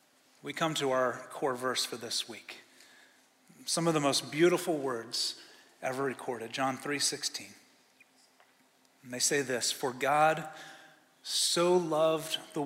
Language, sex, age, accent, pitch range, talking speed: English, male, 30-49, American, 140-170 Hz, 140 wpm